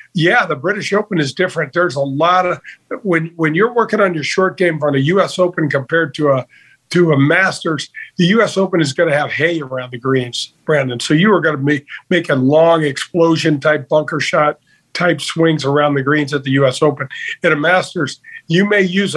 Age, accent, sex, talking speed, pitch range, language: 50-69, American, male, 205 wpm, 145-180 Hz, English